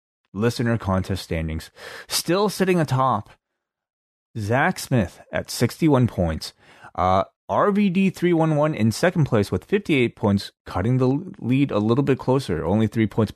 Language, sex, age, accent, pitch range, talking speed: English, male, 30-49, American, 95-125 Hz, 135 wpm